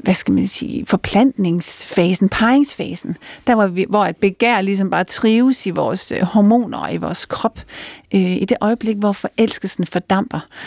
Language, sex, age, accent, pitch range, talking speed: Danish, female, 40-59, native, 195-235 Hz, 150 wpm